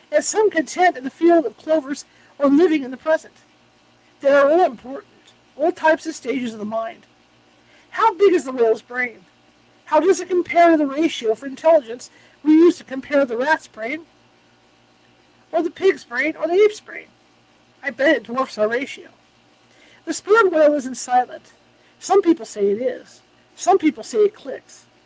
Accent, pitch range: American, 255-330 Hz